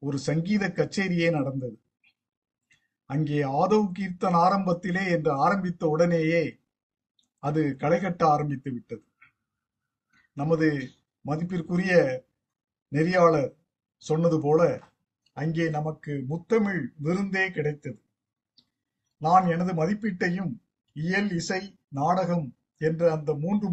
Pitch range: 145-190 Hz